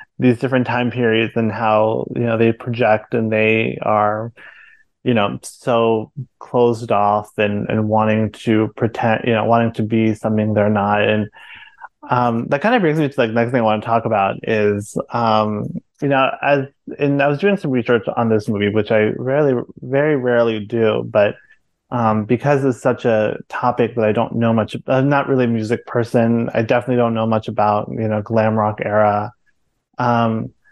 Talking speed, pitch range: 190 wpm, 110-125 Hz